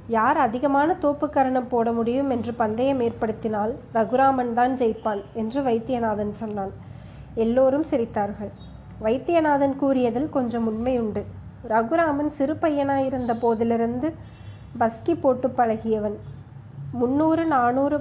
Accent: native